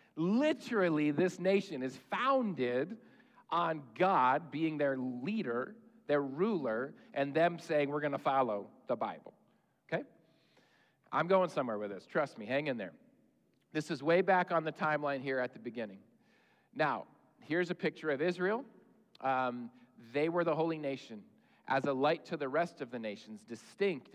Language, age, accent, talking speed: English, 40-59, American, 160 wpm